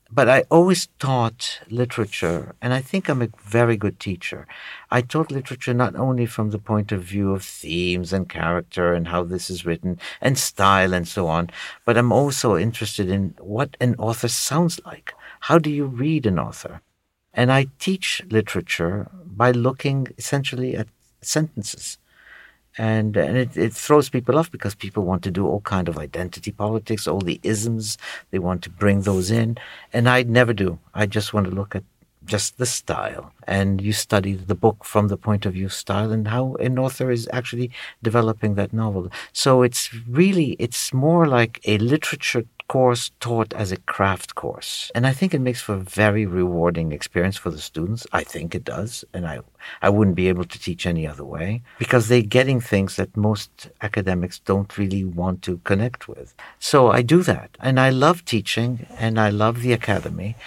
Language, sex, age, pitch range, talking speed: English, male, 60-79, 95-125 Hz, 190 wpm